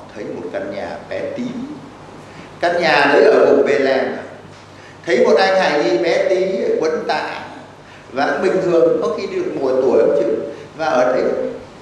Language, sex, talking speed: Vietnamese, male, 175 wpm